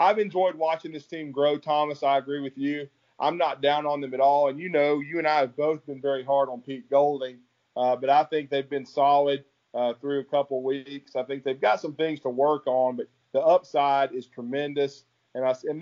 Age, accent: 40-59, American